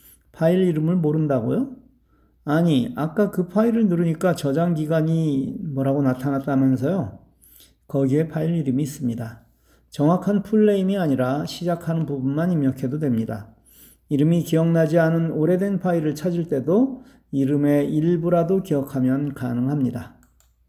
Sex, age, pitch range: male, 40-59, 130-175 Hz